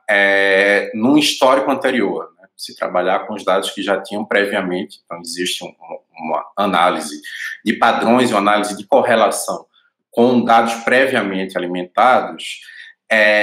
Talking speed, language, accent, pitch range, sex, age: 140 wpm, Portuguese, Brazilian, 105-140 Hz, male, 20-39